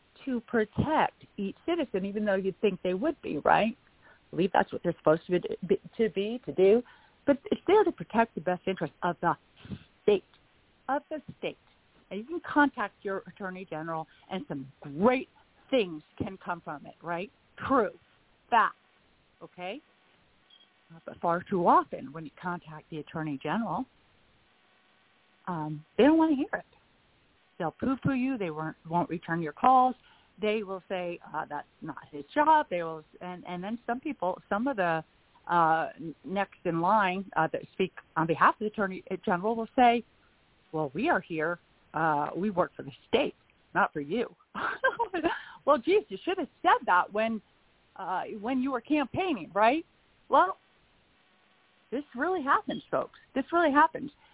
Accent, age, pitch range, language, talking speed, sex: American, 50-69, 175-265 Hz, English, 165 wpm, female